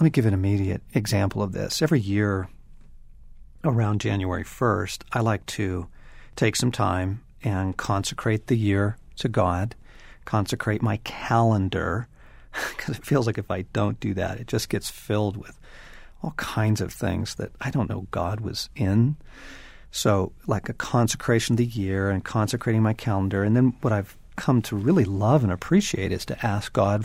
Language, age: English, 40-59